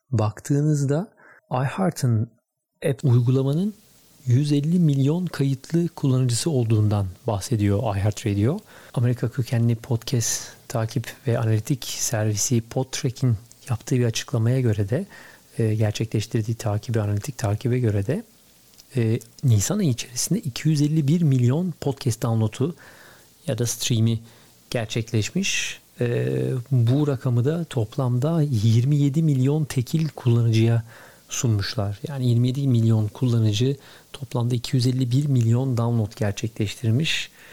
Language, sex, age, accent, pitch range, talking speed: Turkish, male, 40-59, native, 115-135 Hz, 100 wpm